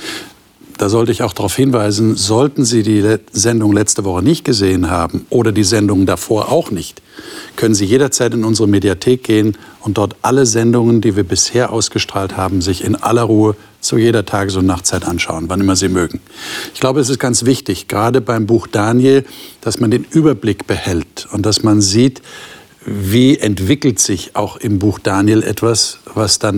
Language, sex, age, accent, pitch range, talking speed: German, male, 50-69, German, 105-135 Hz, 180 wpm